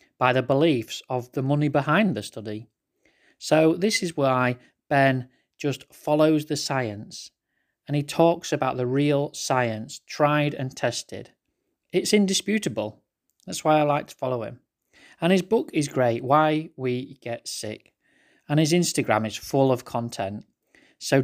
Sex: male